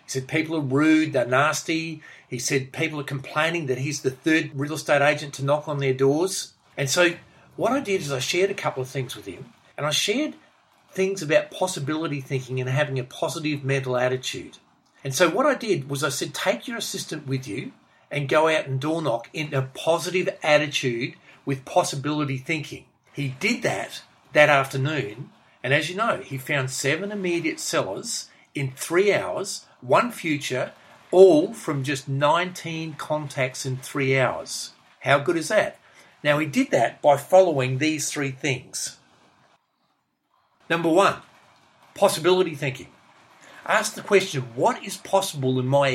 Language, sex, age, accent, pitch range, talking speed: English, male, 40-59, Australian, 135-170 Hz, 170 wpm